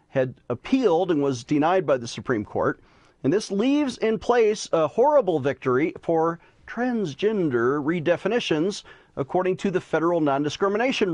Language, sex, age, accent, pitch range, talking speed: English, male, 40-59, American, 155-215 Hz, 135 wpm